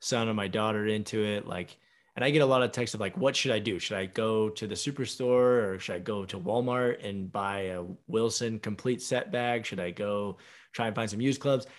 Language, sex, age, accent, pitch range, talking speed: English, male, 20-39, American, 105-135 Hz, 245 wpm